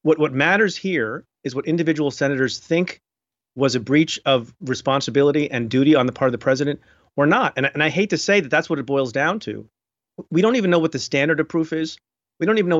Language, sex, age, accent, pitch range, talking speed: English, male, 40-59, American, 130-160 Hz, 240 wpm